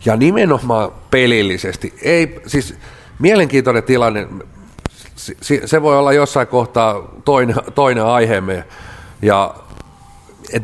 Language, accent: Finnish, native